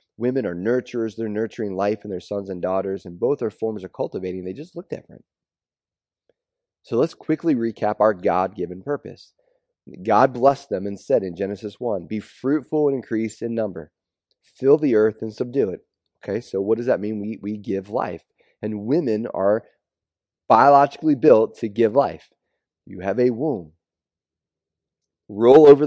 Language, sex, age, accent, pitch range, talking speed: English, male, 30-49, American, 100-125 Hz, 165 wpm